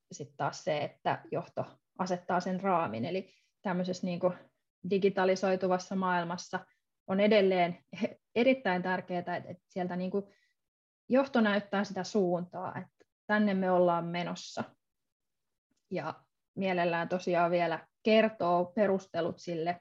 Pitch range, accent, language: 175-205 Hz, native, Finnish